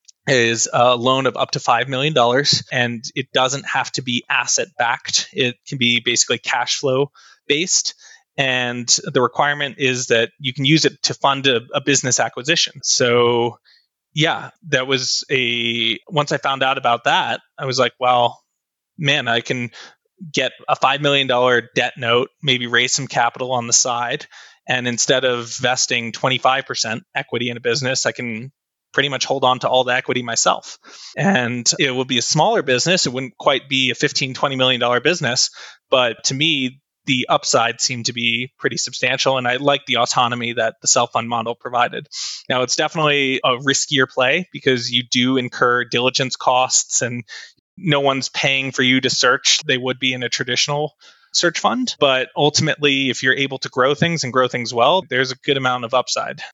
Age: 20-39